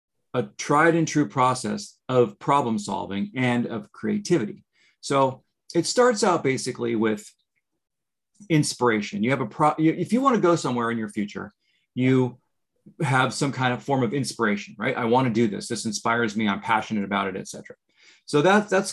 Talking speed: 180 wpm